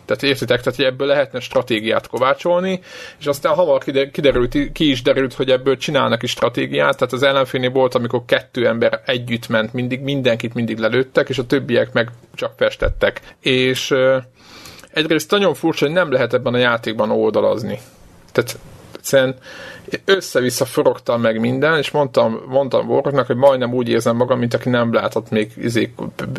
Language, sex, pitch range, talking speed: Hungarian, male, 115-140 Hz, 160 wpm